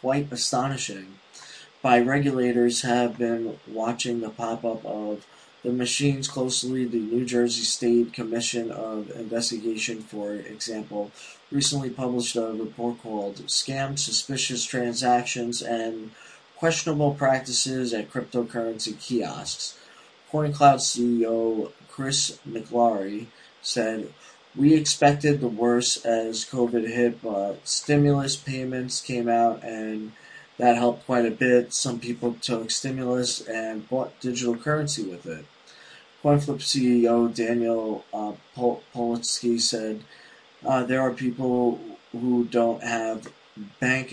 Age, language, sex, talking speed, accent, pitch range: 20-39, English, male, 110 wpm, American, 115-130 Hz